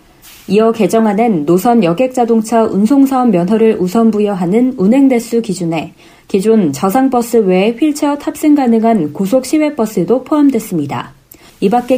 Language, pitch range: Korean, 190-260 Hz